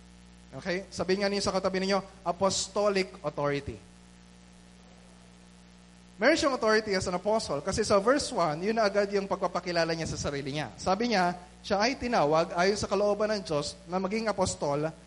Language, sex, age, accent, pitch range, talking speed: Filipino, male, 20-39, native, 155-205 Hz, 160 wpm